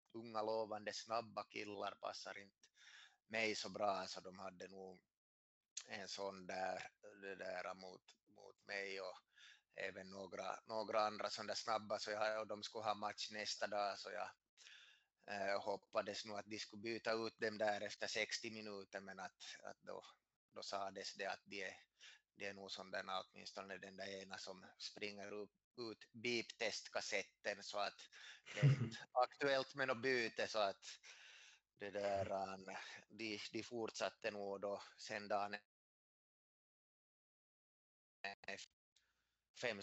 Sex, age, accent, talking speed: male, 20-39, Finnish, 145 wpm